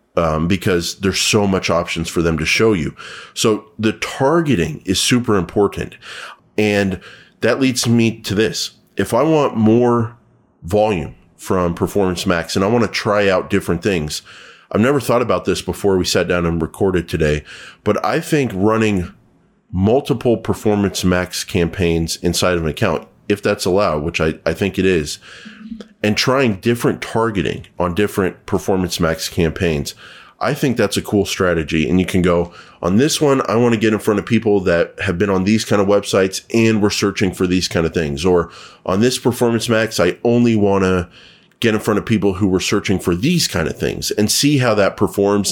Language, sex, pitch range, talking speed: English, male, 90-110 Hz, 190 wpm